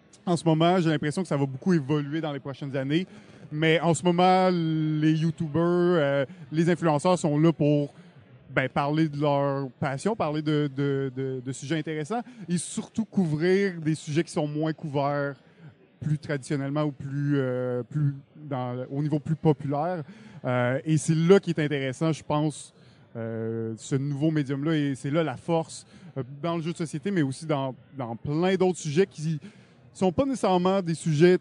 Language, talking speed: French, 185 wpm